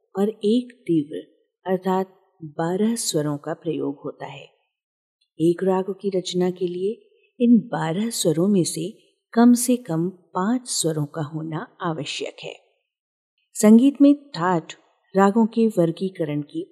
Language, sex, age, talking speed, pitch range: Hindi, female, 50-69, 135 wpm, 160-225 Hz